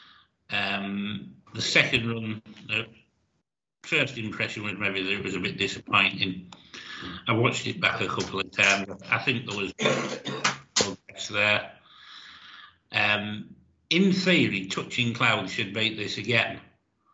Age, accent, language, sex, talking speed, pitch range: 60-79, British, English, male, 135 wpm, 105-135 Hz